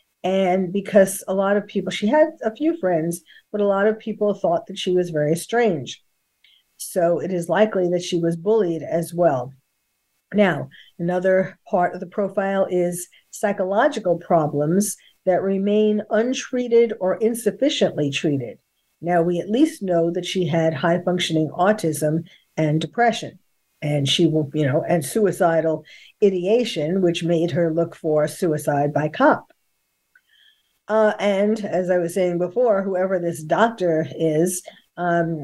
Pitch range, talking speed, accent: 165-210 Hz, 145 wpm, American